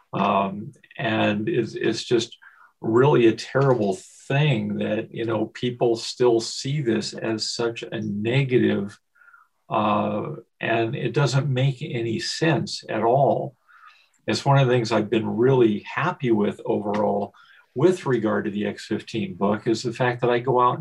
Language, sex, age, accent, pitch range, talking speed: English, male, 50-69, American, 115-135 Hz, 155 wpm